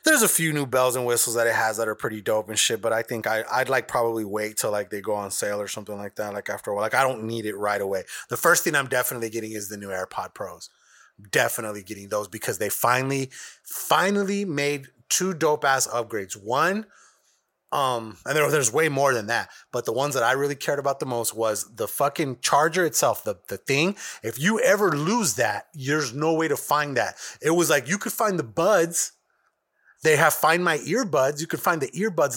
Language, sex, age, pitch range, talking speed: English, male, 30-49, 115-170 Hz, 230 wpm